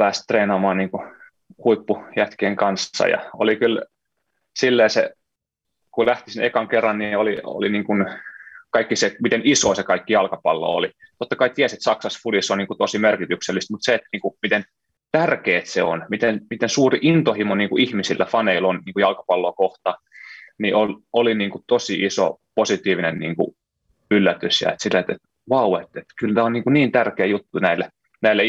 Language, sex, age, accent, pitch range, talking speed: Finnish, male, 20-39, native, 100-130 Hz, 165 wpm